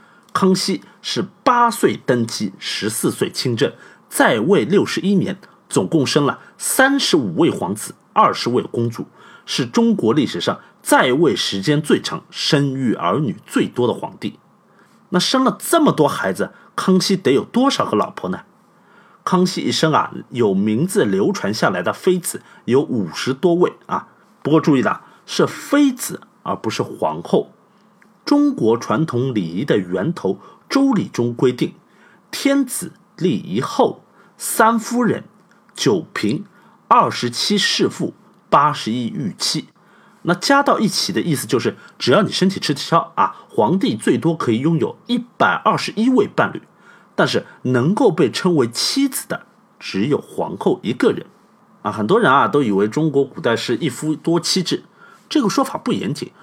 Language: Chinese